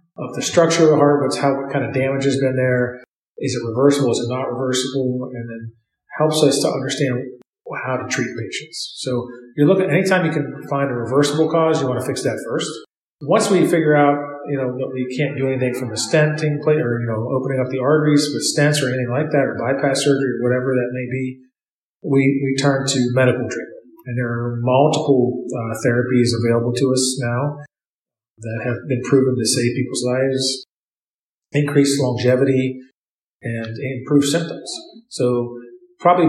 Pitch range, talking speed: 125-145 Hz, 190 wpm